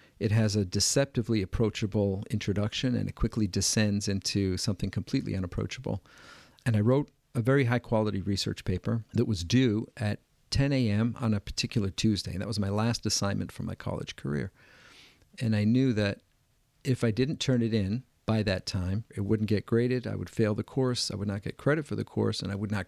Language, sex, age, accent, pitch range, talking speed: English, male, 50-69, American, 100-120 Hz, 200 wpm